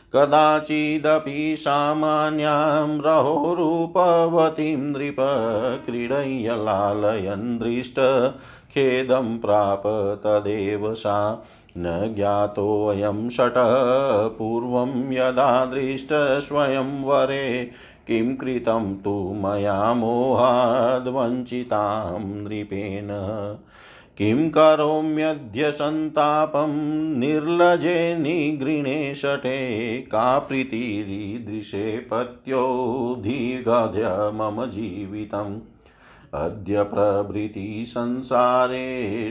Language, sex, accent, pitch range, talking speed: Hindi, male, native, 105-135 Hz, 50 wpm